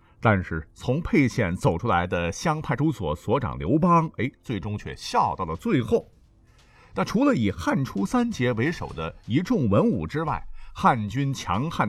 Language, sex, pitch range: Chinese, male, 95-155 Hz